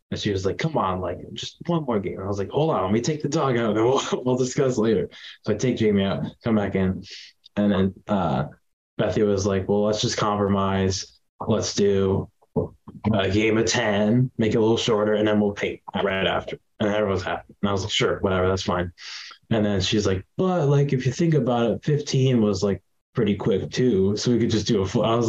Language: English